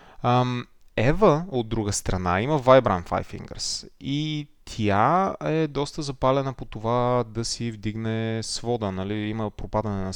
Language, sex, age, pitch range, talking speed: Bulgarian, male, 20-39, 110-150 Hz, 140 wpm